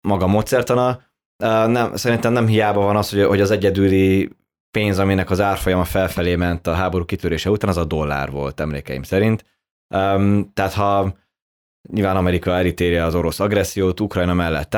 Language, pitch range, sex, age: Hungarian, 90-105 Hz, male, 20-39